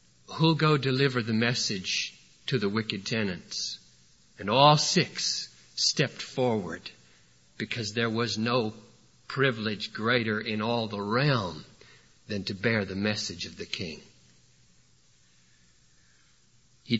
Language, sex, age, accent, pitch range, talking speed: English, male, 50-69, American, 110-135 Hz, 115 wpm